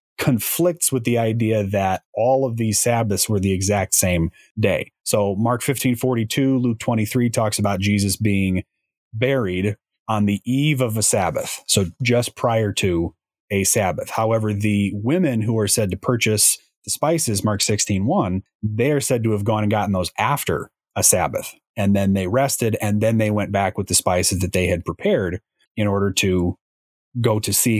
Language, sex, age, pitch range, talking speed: English, male, 30-49, 100-120 Hz, 180 wpm